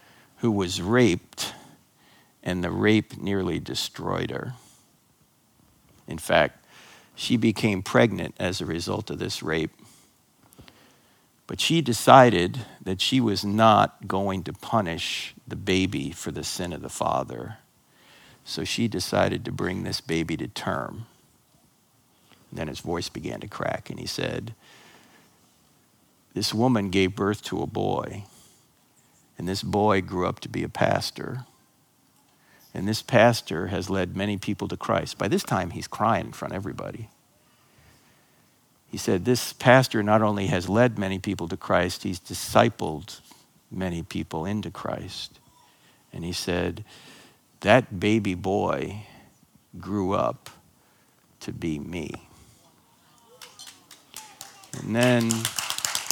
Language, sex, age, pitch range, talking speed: English, male, 50-69, 95-115 Hz, 130 wpm